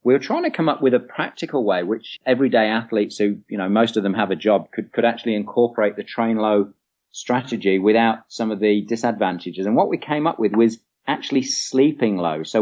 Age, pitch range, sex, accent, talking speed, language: 40-59, 105-125 Hz, male, British, 220 wpm, English